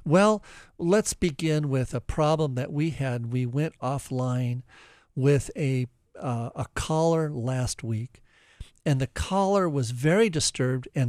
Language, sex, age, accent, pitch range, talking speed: English, male, 50-69, American, 130-170 Hz, 140 wpm